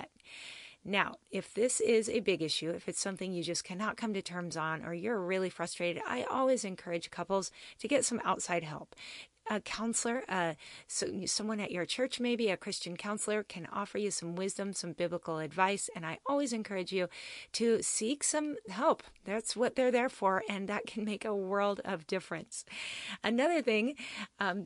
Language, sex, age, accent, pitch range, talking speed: English, female, 30-49, American, 180-225 Hz, 185 wpm